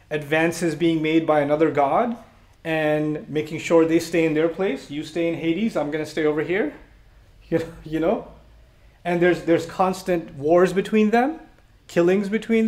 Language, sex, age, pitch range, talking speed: English, male, 30-49, 150-185 Hz, 170 wpm